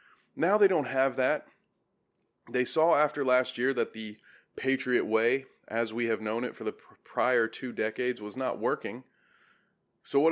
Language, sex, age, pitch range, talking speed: English, male, 20-39, 110-130 Hz, 170 wpm